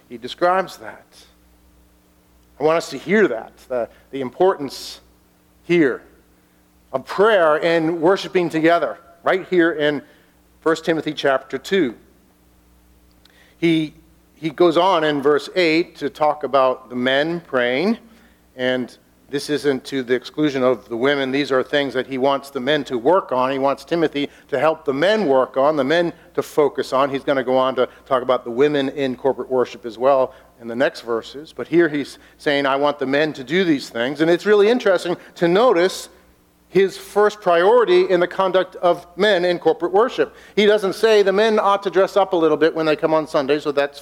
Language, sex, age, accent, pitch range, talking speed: English, male, 50-69, American, 130-170 Hz, 190 wpm